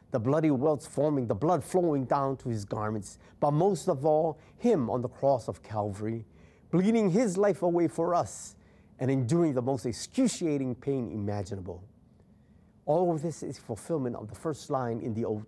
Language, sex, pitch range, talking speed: English, male, 125-195 Hz, 180 wpm